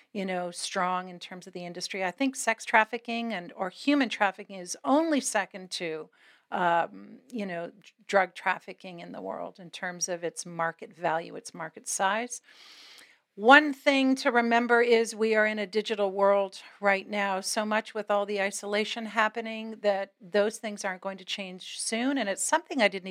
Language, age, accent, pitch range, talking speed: English, 50-69, American, 195-230 Hz, 185 wpm